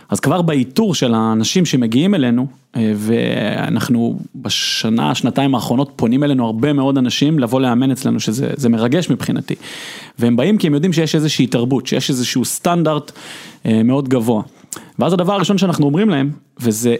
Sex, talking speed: male, 150 wpm